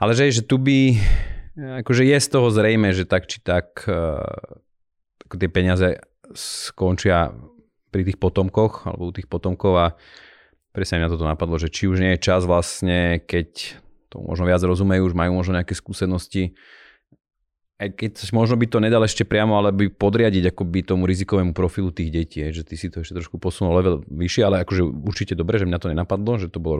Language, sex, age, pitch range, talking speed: Slovak, male, 30-49, 85-105 Hz, 190 wpm